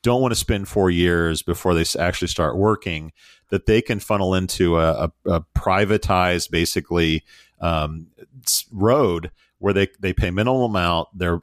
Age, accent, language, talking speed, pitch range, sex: 40-59, American, English, 160 wpm, 80-95 Hz, male